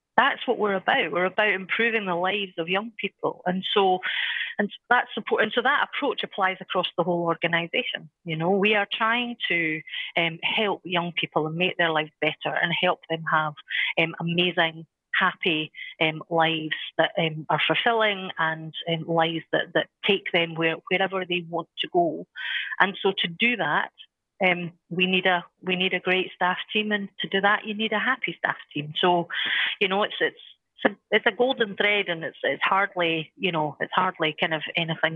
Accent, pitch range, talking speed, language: British, 165-205 Hz, 190 wpm, English